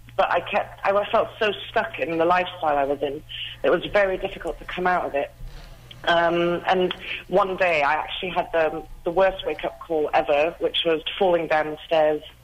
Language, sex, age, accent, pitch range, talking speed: English, female, 40-59, British, 150-180 Hz, 195 wpm